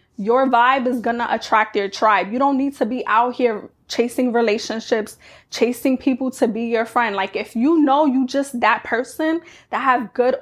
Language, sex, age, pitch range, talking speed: English, female, 20-39, 220-270 Hz, 195 wpm